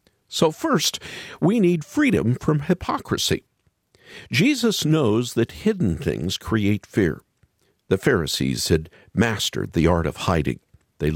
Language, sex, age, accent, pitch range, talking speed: English, male, 50-69, American, 100-155 Hz, 125 wpm